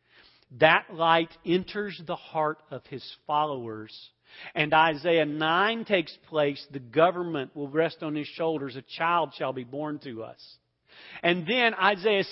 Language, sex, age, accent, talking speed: English, male, 40-59, American, 145 wpm